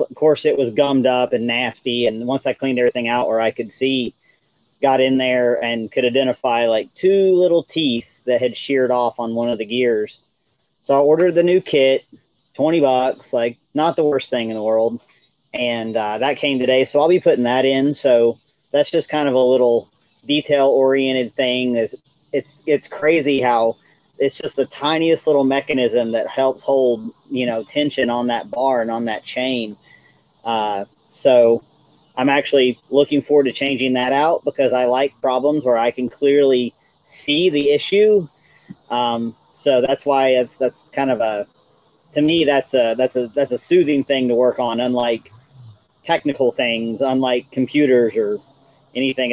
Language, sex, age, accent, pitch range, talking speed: English, male, 40-59, American, 120-145 Hz, 180 wpm